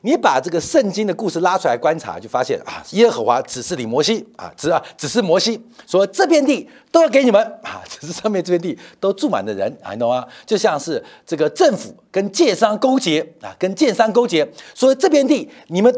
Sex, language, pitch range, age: male, Chinese, 195-285 Hz, 50-69